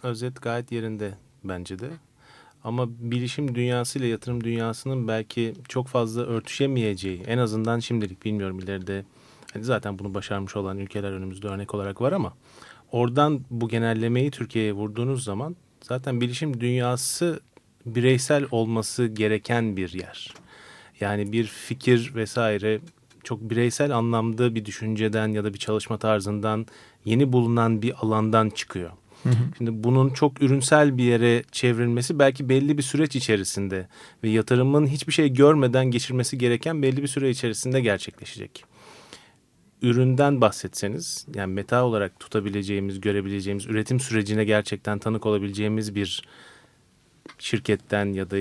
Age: 30-49